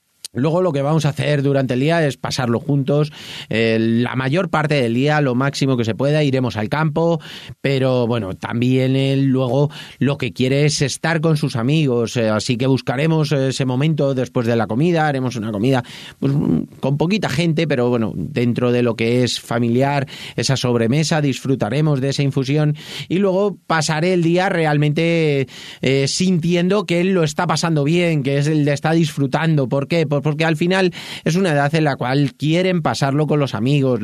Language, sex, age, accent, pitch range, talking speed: Spanish, male, 30-49, Spanish, 125-155 Hz, 185 wpm